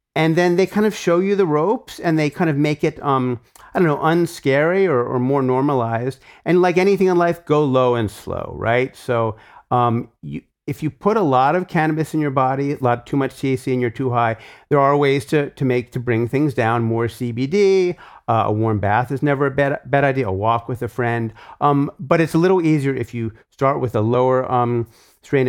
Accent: American